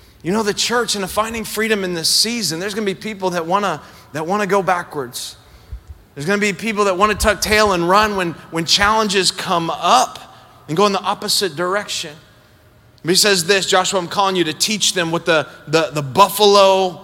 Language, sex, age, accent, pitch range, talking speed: English, male, 30-49, American, 150-200 Hz, 220 wpm